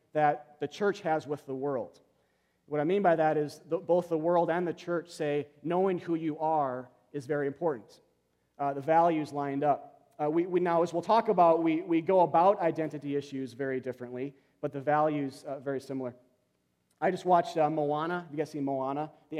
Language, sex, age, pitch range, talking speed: English, male, 30-49, 135-170 Hz, 195 wpm